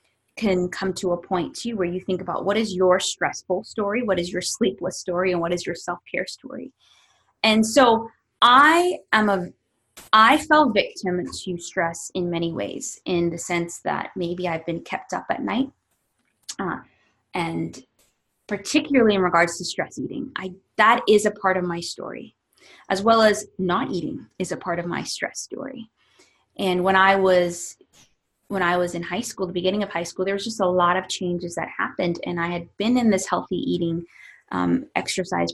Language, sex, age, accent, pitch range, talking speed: English, female, 20-39, American, 175-210 Hz, 185 wpm